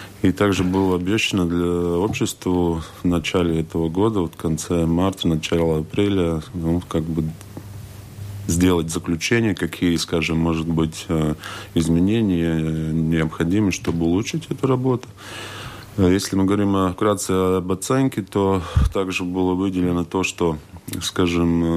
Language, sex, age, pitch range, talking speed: Russian, male, 20-39, 80-95 Hz, 125 wpm